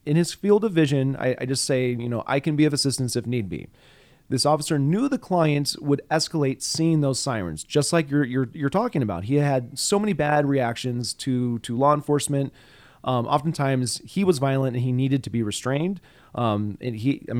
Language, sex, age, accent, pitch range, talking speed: English, male, 30-49, American, 120-150 Hz, 210 wpm